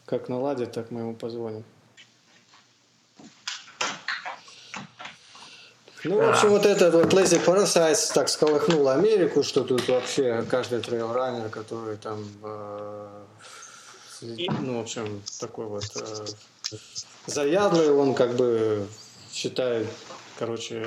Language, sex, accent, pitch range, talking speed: Russian, male, native, 115-130 Hz, 100 wpm